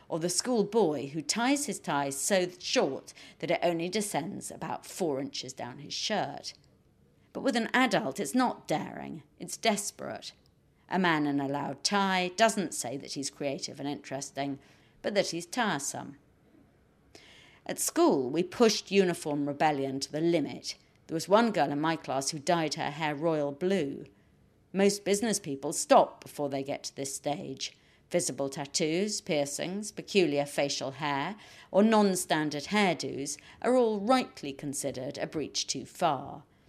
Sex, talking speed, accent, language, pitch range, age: female, 155 wpm, British, English, 145-200 Hz, 50-69